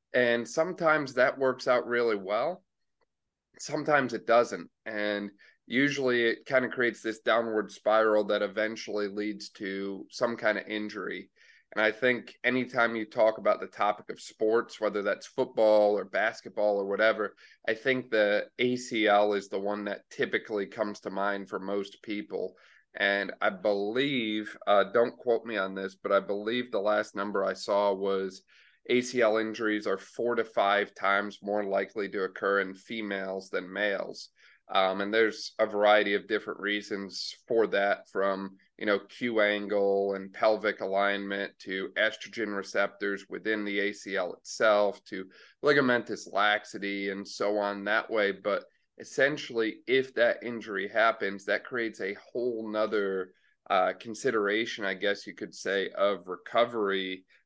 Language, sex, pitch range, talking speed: English, male, 100-115 Hz, 150 wpm